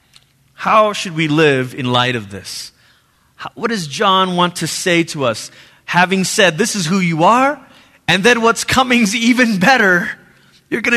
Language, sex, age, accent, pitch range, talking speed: English, male, 30-49, American, 145-205 Hz, 175 wpm